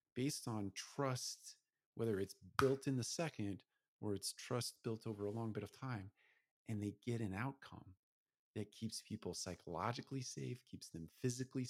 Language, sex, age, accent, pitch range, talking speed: English, male, 40-59, American, 95-120 Hz, 165 wpm